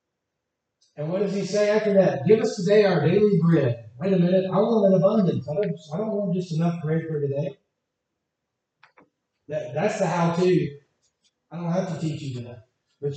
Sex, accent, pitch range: male, American, 145-185 Hz